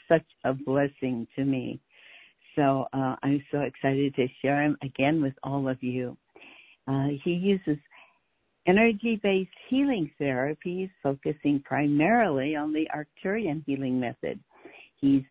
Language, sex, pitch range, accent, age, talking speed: English, female, 135-170 Hz, American, 60-79, 130 wpm